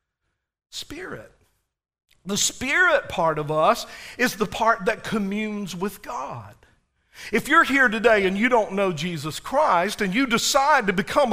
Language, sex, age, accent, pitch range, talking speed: English, male, 50-69, American, 175-240 Hz, 150 wpm